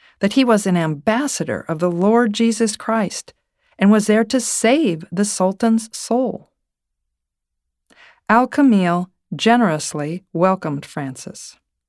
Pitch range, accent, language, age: 160-215 Hz, American, English, 50-69